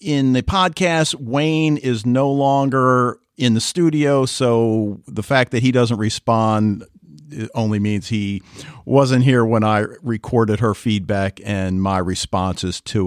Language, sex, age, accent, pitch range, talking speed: English, male, 50-69, American, 110-145 Hz, 140 wpm